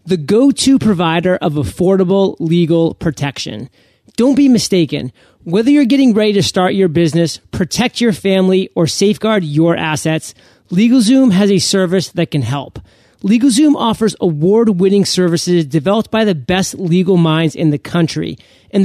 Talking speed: 145 wpm